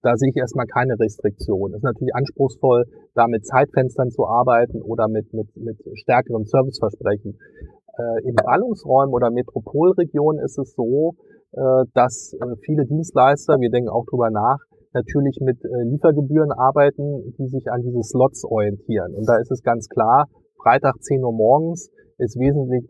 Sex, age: male, 30-49